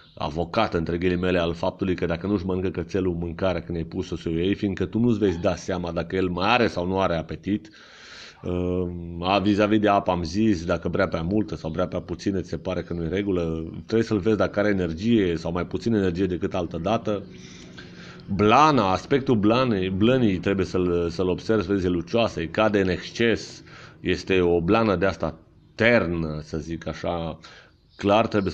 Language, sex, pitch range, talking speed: Romanian, male, 85-100 Hz, 195 wpm